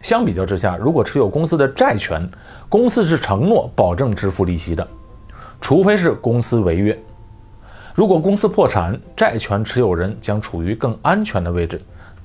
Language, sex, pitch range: Chinese, male, 95-125 Hz